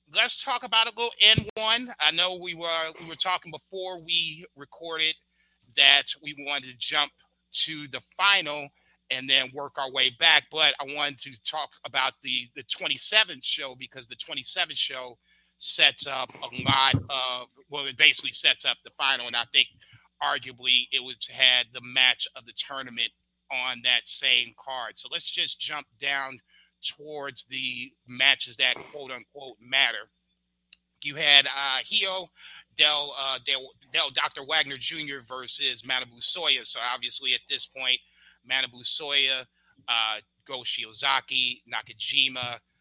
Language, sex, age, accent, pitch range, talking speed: English, male, 40-59, American, 125-145 Hz, 155 wpm